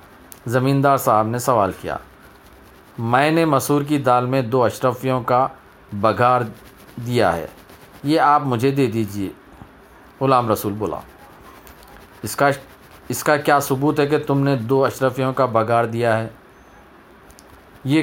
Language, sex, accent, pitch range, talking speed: Telugu, male, native, 115-140 Hz, 50 wpm